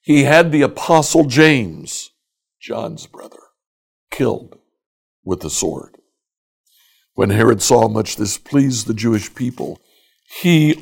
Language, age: English, 60-79